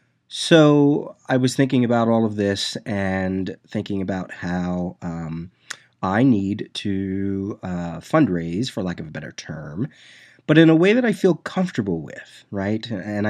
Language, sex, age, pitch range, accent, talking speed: English, male, 30-49, 95-125 Hz, American, 160 wpm